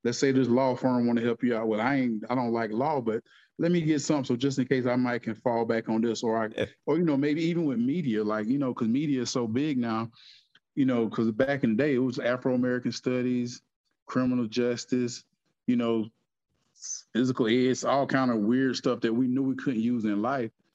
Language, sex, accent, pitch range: English, male, American, 110-125 Hz